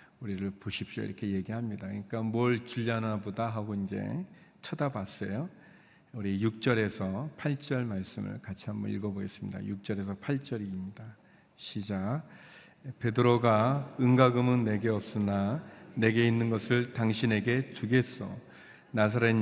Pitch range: 105-130 Hz